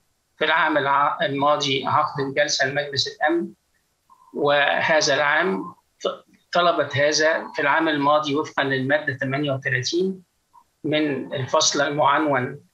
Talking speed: 95 wpm